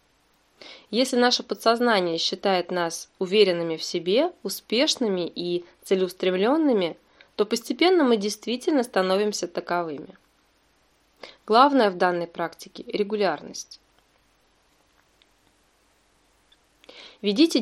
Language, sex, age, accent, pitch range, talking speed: Russian, female, 20-39, native, 180-240 Hz, 80 wpm